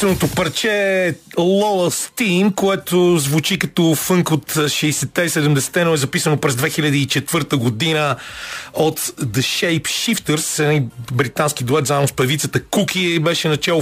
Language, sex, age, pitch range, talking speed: Bulgarian, male, 40-59, 145-175 Hz, 115 wpm